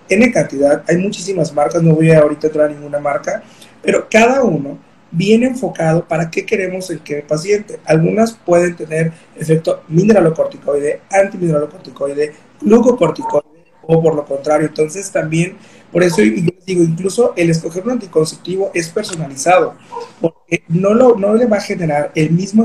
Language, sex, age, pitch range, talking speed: Spanish, male, 30-49, 160-200 Hz, 155 wpm